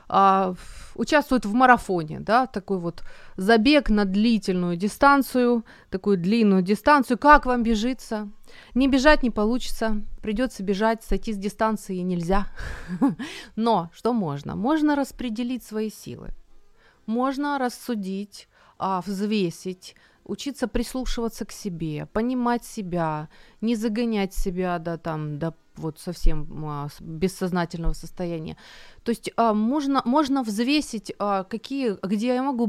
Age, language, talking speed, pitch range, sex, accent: 30-49, Ukrainian, 120 wpm, 175-235 Hz, female, native